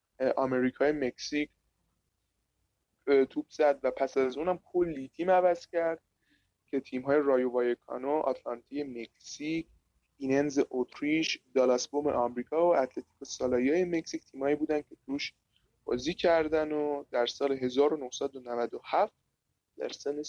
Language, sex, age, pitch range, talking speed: Persian, male, 20-39, 130-160 Hz, 125 wpm